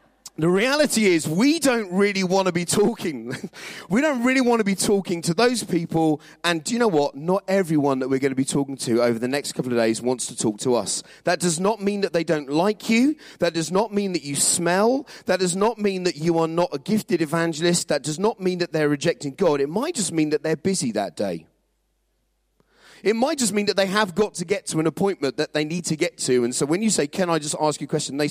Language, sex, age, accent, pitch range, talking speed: English, male, 30-49, British, 150-200 Hz, 255 wpm